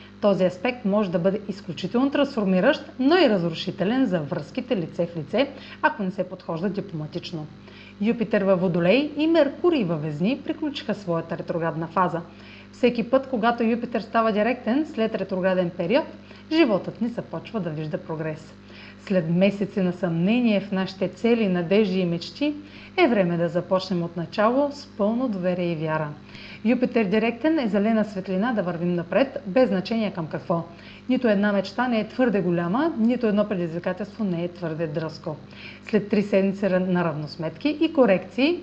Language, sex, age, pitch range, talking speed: Bulgarian, female, 30-49, 175-240 Hz, 155 wpm